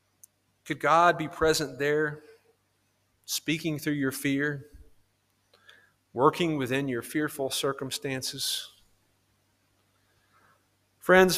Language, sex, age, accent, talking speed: English, male, 30-49, American, 80 wpm